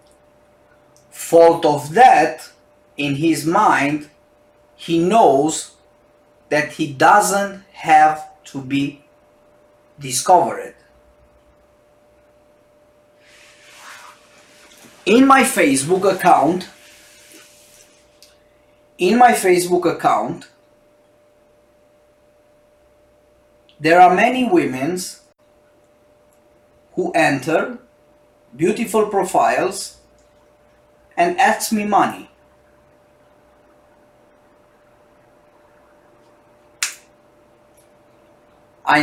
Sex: male